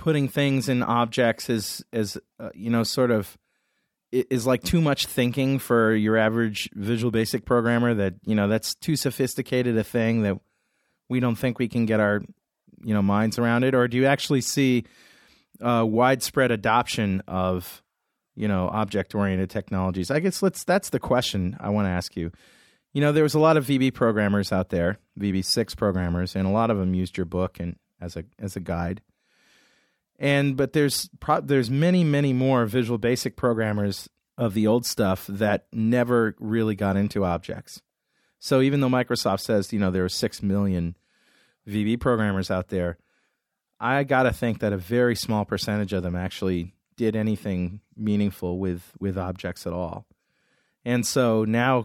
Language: English